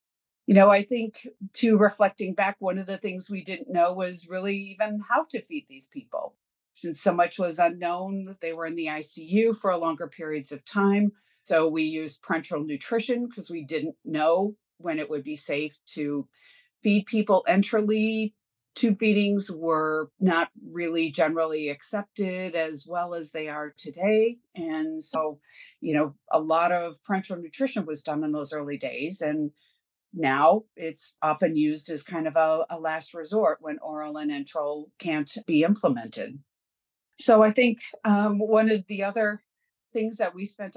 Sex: female